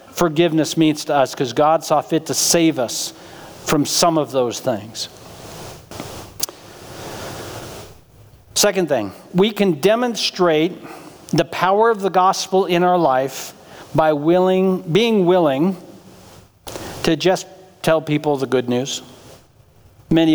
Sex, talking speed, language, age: male, 120 wpm, English, 50-69